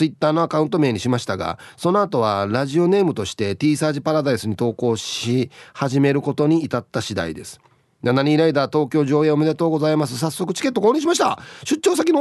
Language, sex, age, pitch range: Japanese, male, 40-59, 120-175 Hz